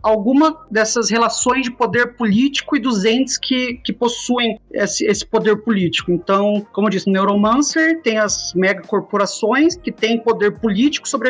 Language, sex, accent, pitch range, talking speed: Portuguese, male, Brazilian, 215-275 Hz, 160 wpm